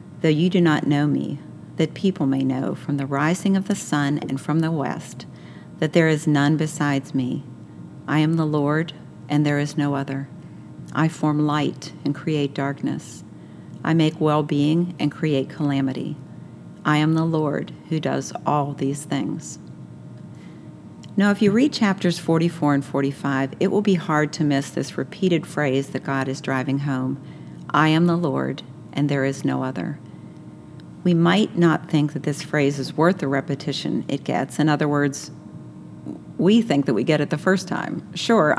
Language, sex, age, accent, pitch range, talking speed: English, female, 50-69, American, 140-170 Hz, 175 wpm